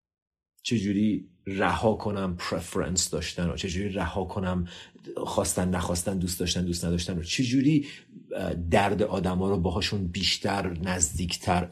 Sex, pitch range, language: male, 90-125 Hz, Persian